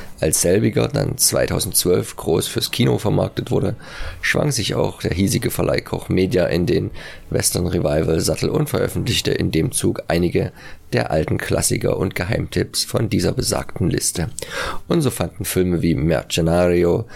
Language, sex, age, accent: German, male, 30-49, German